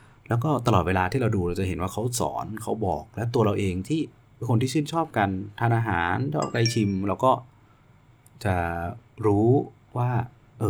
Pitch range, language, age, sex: 95-120 Hz, Thai, 30-49, male